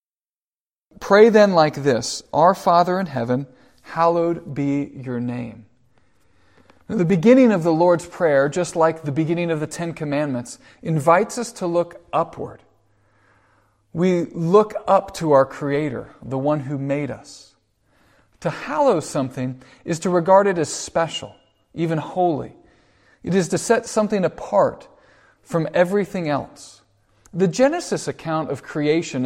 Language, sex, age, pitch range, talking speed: English, male, 40-59, 130-180 Hz, 135 wpm